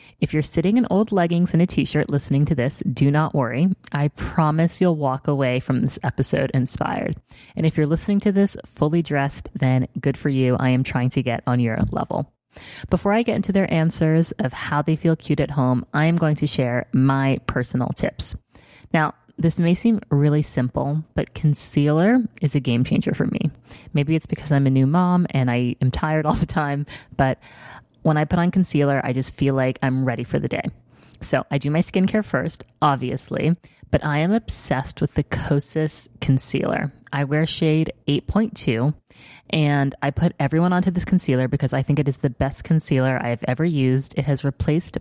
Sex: female